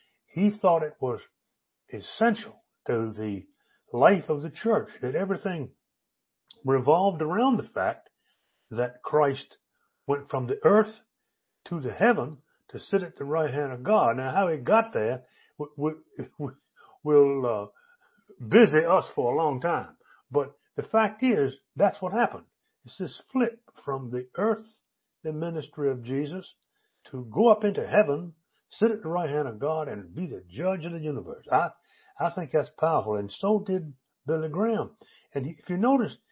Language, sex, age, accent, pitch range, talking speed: English, male, 60-79, American, 145-215 Hz, 165 wpm